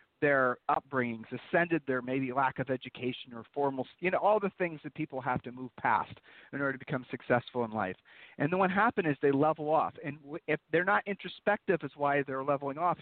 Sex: male